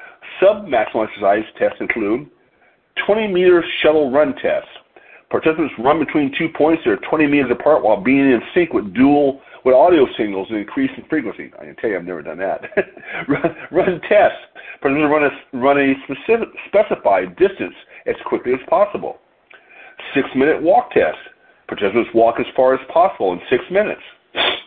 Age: 50-69